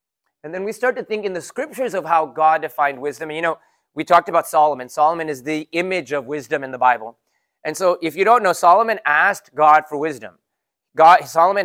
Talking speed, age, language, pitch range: 210 wpm, 30-49, English, 150-185 Hz